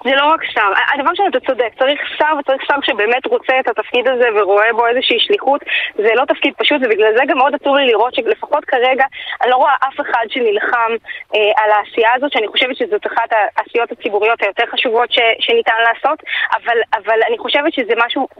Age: 20-39